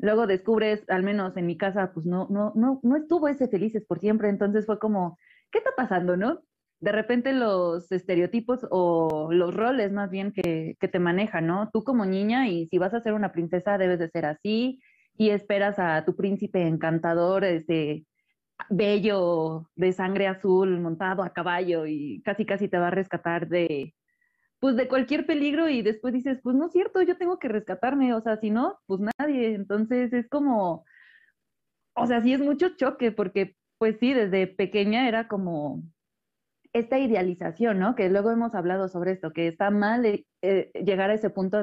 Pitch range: 185-245 Hz